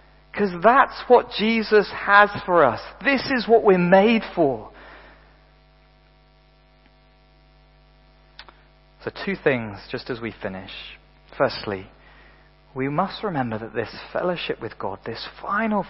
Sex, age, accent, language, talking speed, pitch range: male, 40-59, British, English, 115 wpm, 110-145 Hz